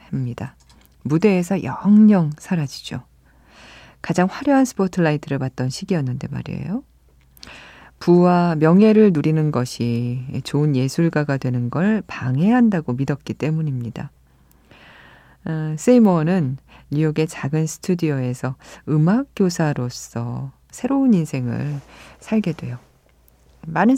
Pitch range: 120-170 Hz